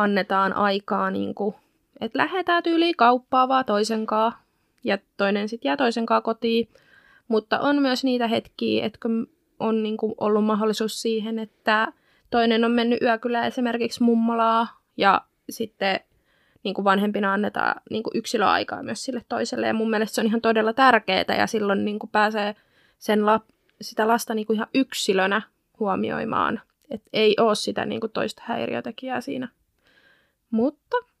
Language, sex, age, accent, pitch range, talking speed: Finnish, female, 20-39, native, 215-255 Hz, 150 wpm